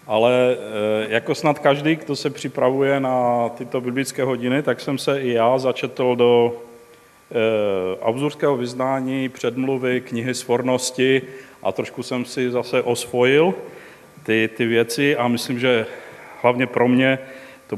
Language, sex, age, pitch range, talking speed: Czech, male, 40-59, 115-130 Hz, 130 wpm